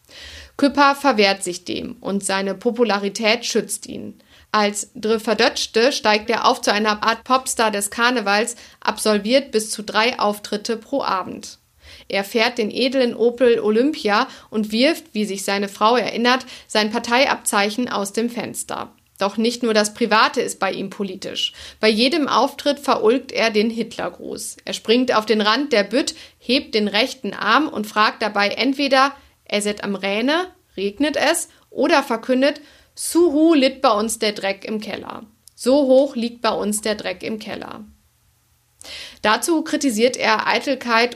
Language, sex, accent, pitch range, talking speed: German, female, German, 210-260 Hz, 155 wpm